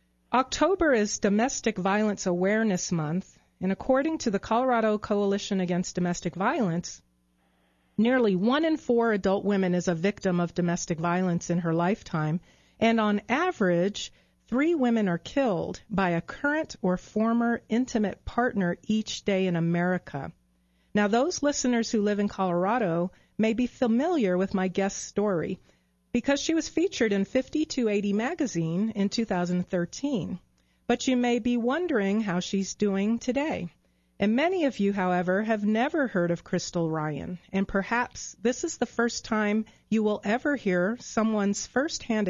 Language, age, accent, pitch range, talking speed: English, 40-59, American, 180-235 Hz, 150 wpm